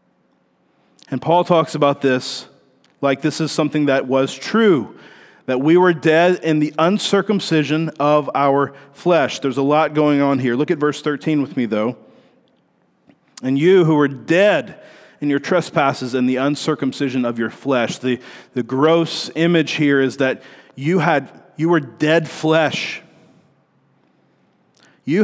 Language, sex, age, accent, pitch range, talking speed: English, male, 40-59, American, 140-165 Hz, 150 wpm